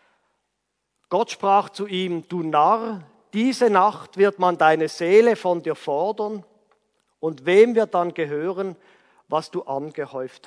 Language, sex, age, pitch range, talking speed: German, male, 50-69, 170-255 Hz, 130 wpm